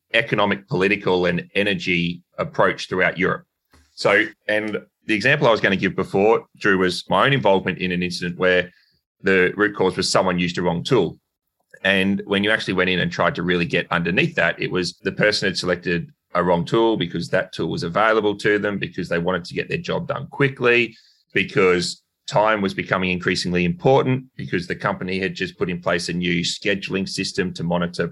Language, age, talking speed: English, 30-49, 200 wpm